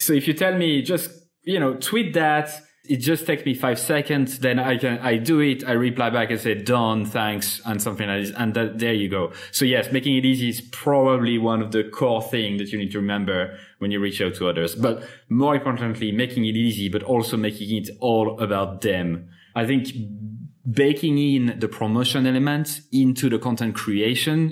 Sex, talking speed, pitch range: male, 210 wpm, 110-135 Hz